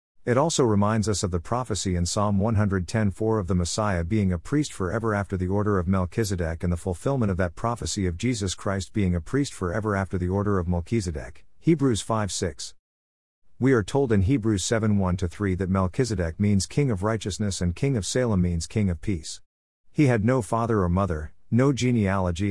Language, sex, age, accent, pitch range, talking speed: English, male, 50-69, American, 90-115 Hz, 195 wpm